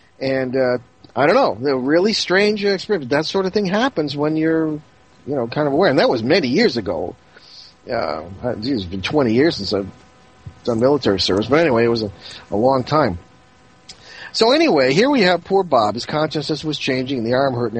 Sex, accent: male, American